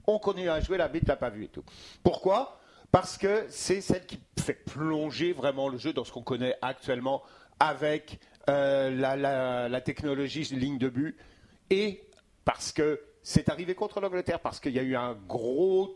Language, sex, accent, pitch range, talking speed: French, male, French, 130-170 Hz, 190 wpm